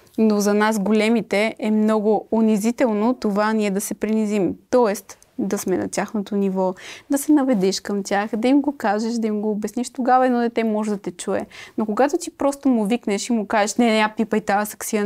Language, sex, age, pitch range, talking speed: Bulgarian, female, 20-39, 200-250 Hz, 205 wpm